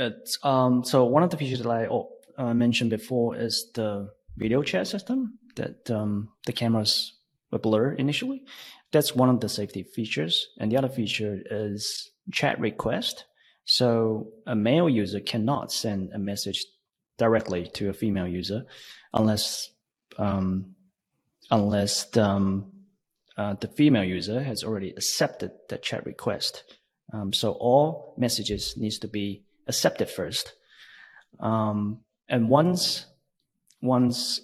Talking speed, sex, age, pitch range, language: 135 wpm, male, 30-49, 100-125 Hz, English